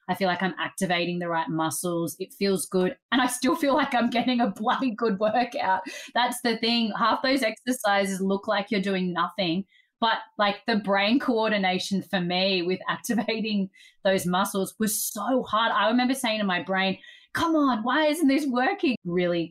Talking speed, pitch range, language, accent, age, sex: 185 wpm, 165-235 Hz, English, Australian, 20-39, female